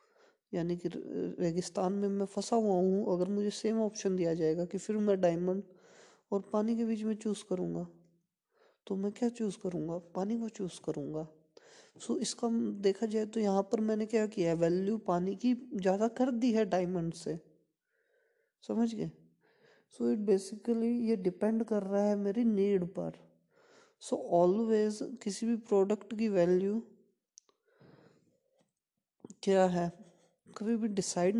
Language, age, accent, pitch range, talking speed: Hindi, 20-39, native, 180-225 Hz, 155 wpm